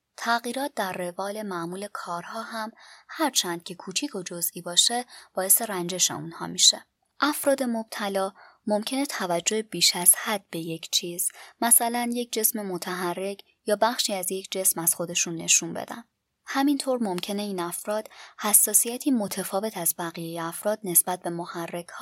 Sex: male